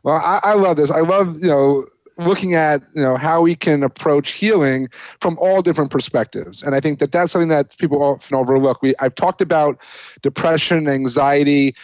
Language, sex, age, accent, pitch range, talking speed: English, male, 30-49, American, 130-155 Hz, 195 wpm